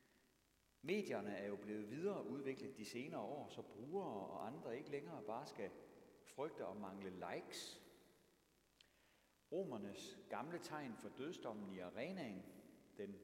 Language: Danish